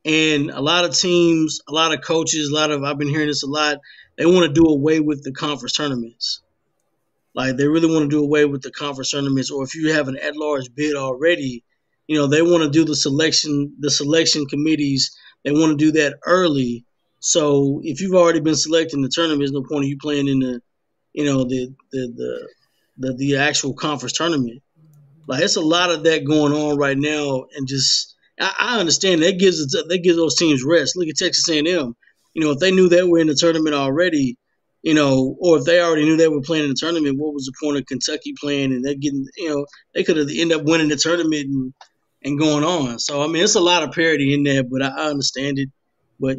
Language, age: English, 20-39